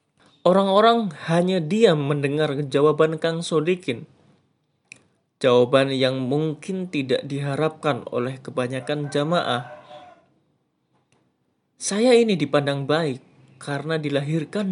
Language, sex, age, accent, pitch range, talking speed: Indonesian, male, 20-39, native, 135-165 Hz, 85 wpm